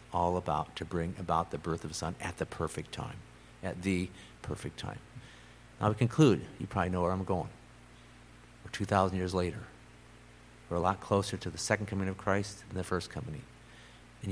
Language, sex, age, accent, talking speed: English, male, 50-69, American, 195 wpm